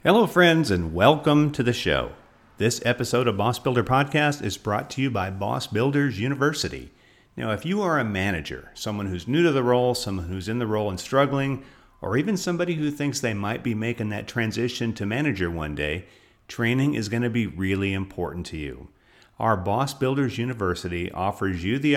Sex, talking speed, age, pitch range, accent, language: male, 190 wpm, 50-69, 90-130 Hz, American, English